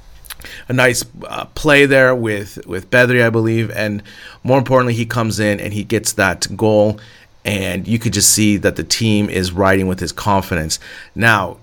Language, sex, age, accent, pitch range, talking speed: English, male, 30-49, American, 95-120 Hz, 180 wpm